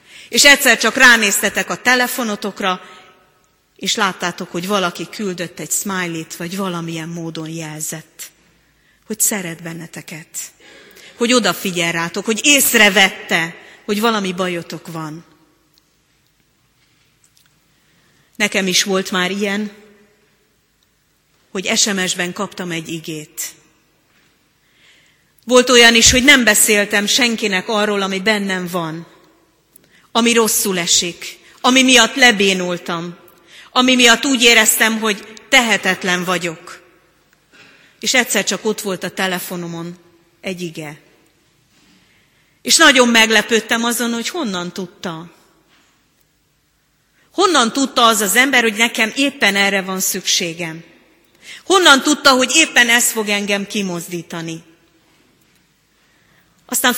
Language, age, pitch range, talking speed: Hungarian, 30-49, 170-230 Hz, 105 wpm